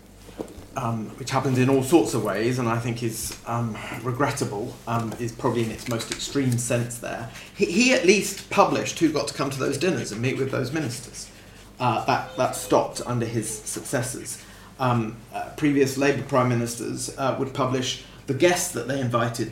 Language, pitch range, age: English, 110-140 Hz, 30-49